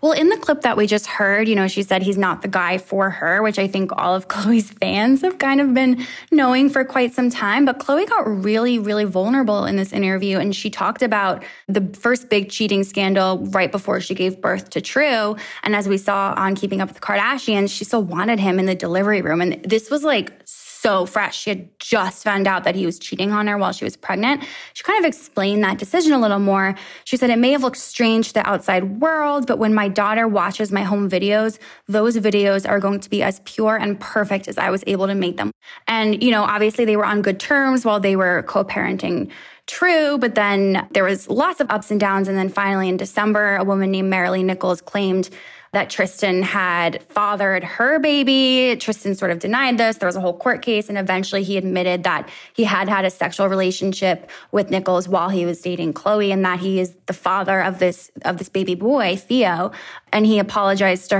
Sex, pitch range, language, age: female, 190-225 Hz, English, 10-29